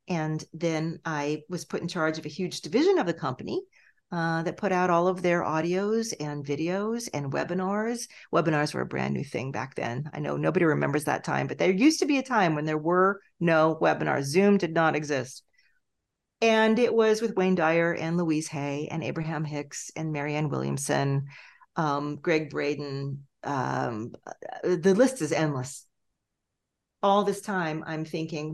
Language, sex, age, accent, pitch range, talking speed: English, female, 40-59, American, 150-185 Hz, 175 wpm